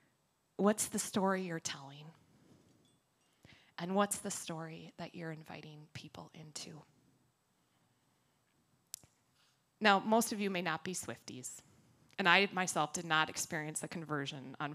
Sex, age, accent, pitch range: female, 20-39, American, 150-185 Hz